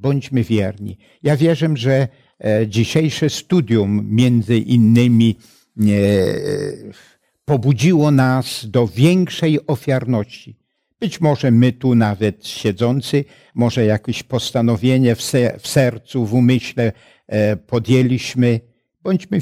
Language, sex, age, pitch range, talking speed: Polish, male, 60-79, 115-155 Hz, 90 wpm